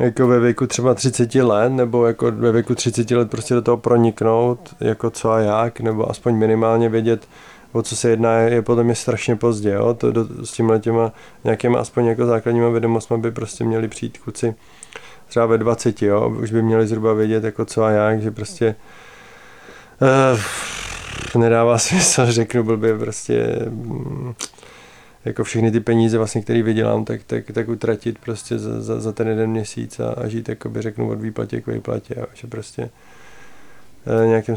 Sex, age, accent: male, 20-39, native